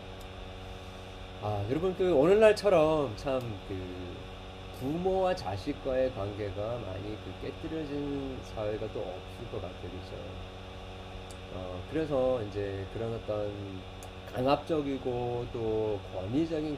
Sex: male